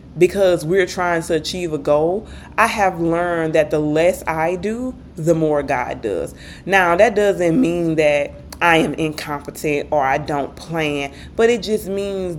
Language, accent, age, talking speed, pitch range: English, American, 20-39, 170 wpm, 150-180 Hz